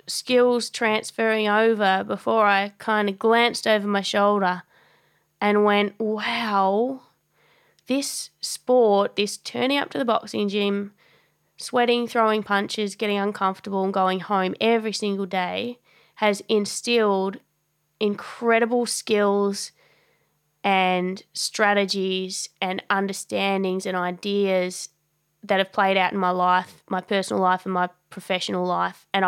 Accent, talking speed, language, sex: Australian, 120 wpm, English, female